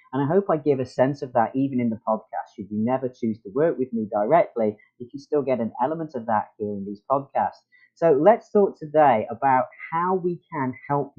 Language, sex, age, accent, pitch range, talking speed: English, male, 40-59, British, 115-155 Hz, 230 wpm